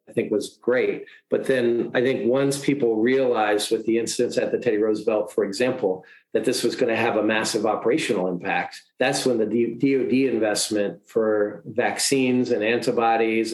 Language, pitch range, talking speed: English, 115-140 Hz, 175 wpm